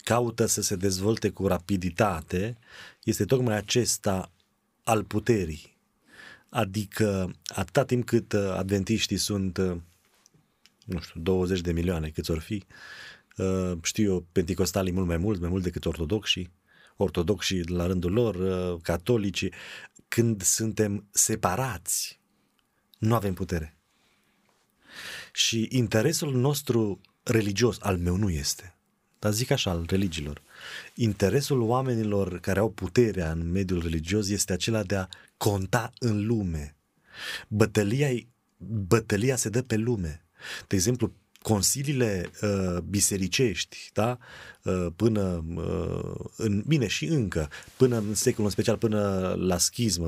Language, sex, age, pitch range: Romanian, male, 30-49, 90-115 Hz